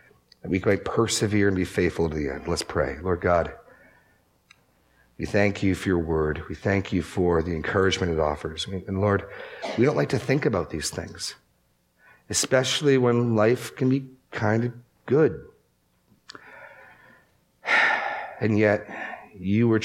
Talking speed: 150 wpm